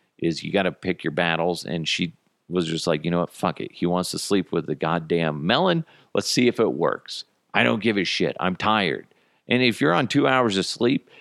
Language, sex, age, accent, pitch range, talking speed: English, male, 40-59, American, 90-125 Hz, 240 wpm